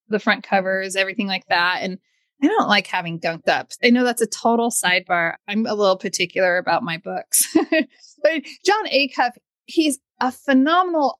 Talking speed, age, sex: 170 wpm, 30-49, female